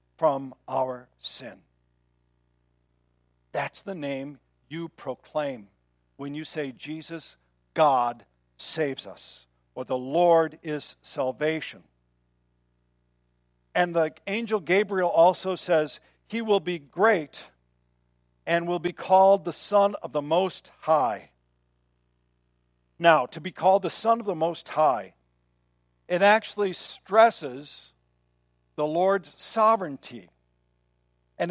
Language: English